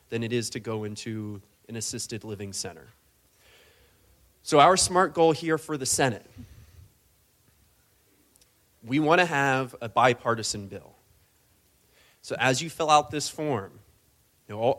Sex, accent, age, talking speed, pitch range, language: male, American, 30-49, 135 wpm, 110-135 Hz, English